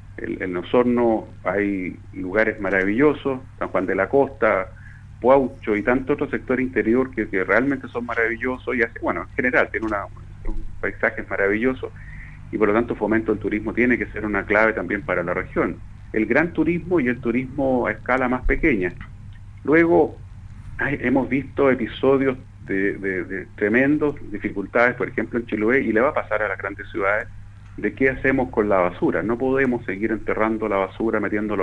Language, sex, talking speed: Spanish, male, 175 wpm